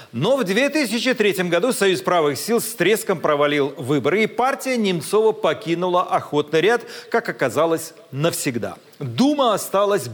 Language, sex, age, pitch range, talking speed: Russian, male, 40-59, 165-220 Hz, 130 wpm